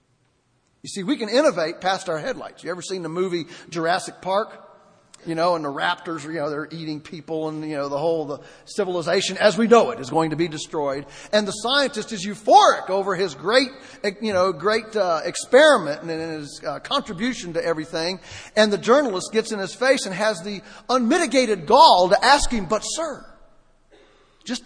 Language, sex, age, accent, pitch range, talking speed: English, male, 40-59, American, 170-230 Hz, 190 wpm